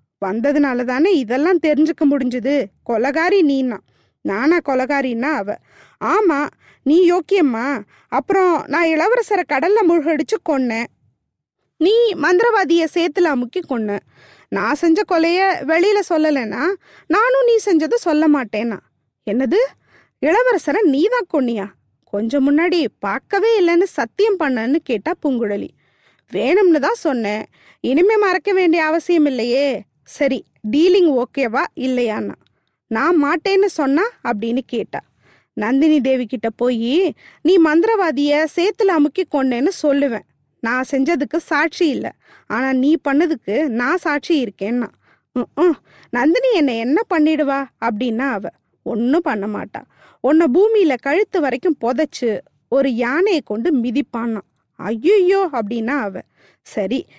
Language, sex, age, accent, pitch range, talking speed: Tamil, female, 20-39, native, 250-350 Hz, 110 wpm